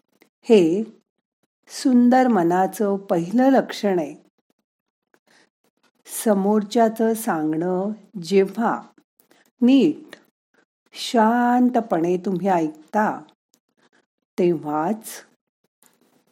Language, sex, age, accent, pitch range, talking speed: Marathi, female, 50-69, native, 180-250 Hz, 50 wpm